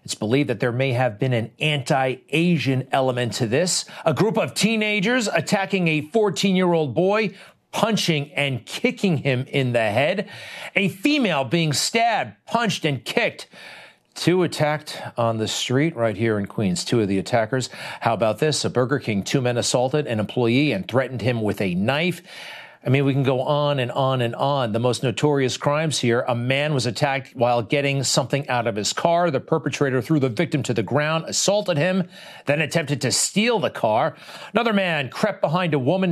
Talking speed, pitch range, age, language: 185 wpm, 125-175 Hz, 40-59, English